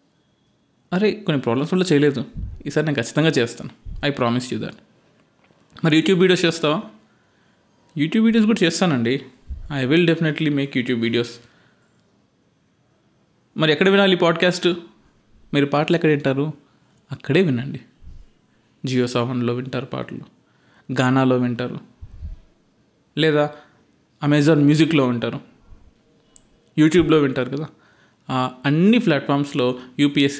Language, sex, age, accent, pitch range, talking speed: Telugu, male, 20-39, native, 125-170 Hz, 105 wpm